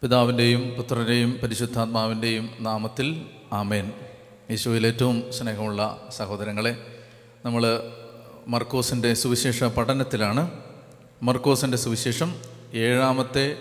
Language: Malayalam